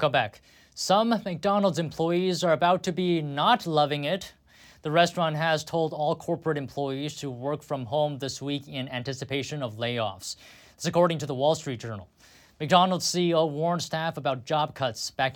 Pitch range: 135-180 Hz